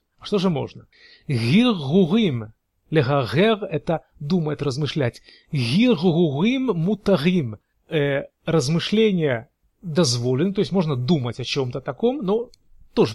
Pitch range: 135-190 Hz